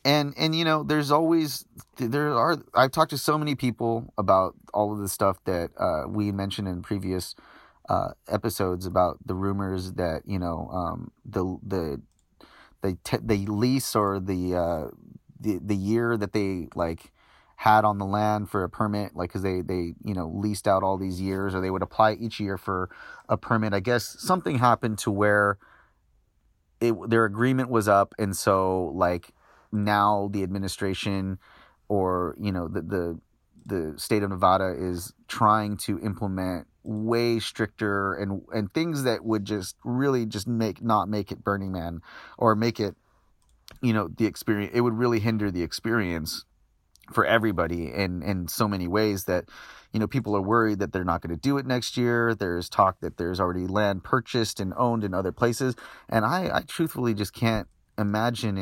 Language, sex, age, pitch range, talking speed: English, male, 30-49, 95-115 Hz, 180 wpm